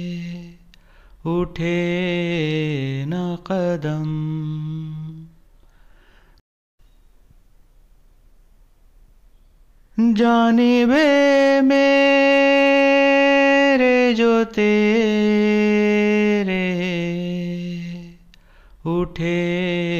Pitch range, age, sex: 175-245 Hz, 30-49, male